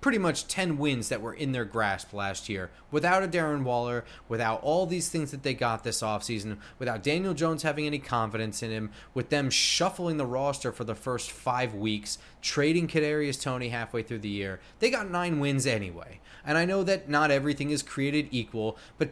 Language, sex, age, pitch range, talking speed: English, male, 30-49, 115-165 Hz, 200 wpm